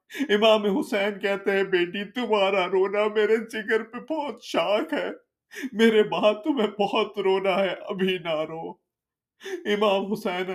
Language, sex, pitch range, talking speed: Urdu, male, 175-220 Hz, 135 wpm